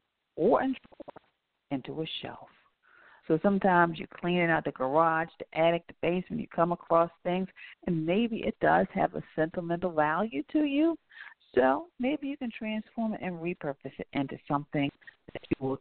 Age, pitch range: 50-69, 150-210 Hz